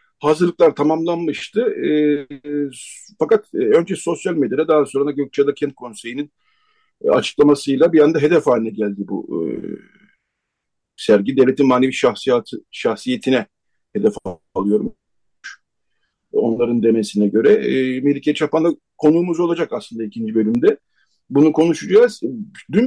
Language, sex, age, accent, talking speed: Turkish, male, 50-69, native, 115 wpm